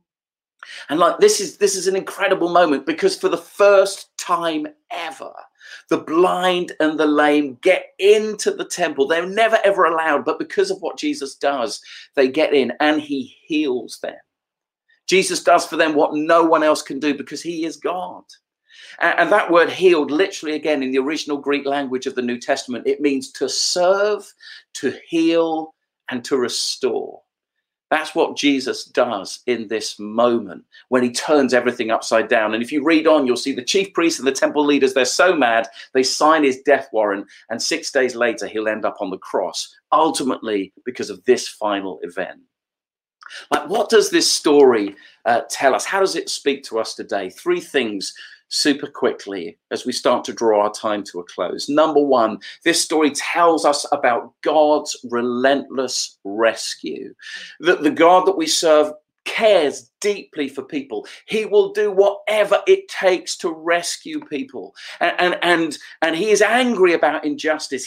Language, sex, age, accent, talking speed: English, male, 40-59, British, 175 wpm